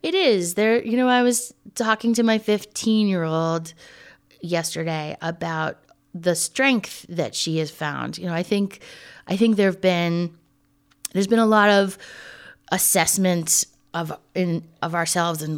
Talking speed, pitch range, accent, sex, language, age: 155 wpm, 165-205 Hz, American, female, English, 30-49